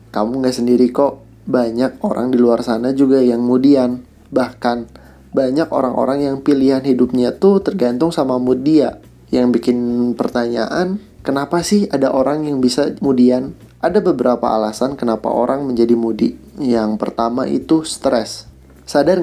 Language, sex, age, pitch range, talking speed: Indonesian, male, 20-39, 120-140 Hz, 135 wpm